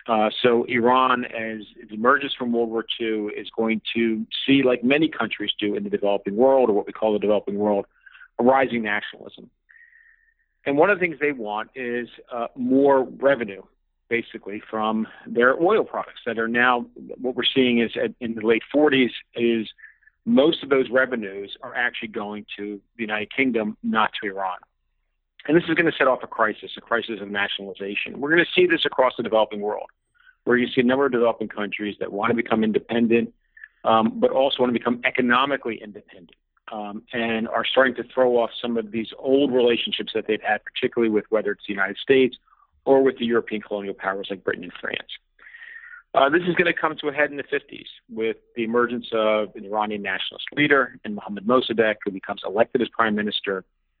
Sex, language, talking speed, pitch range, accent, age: male, English, 190 wpm, 105-130 Hz, American, 50-69